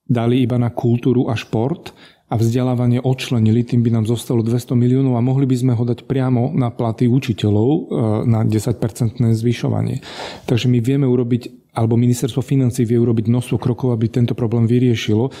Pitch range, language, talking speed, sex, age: 115-130 Hz, Slovak, 170 wpm, male, 30-49